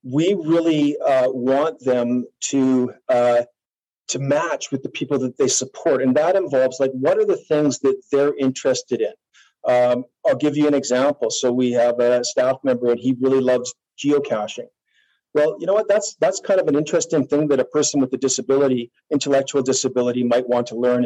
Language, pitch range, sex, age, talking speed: English, 125-150 Hz, male, 40-59, 190 wpm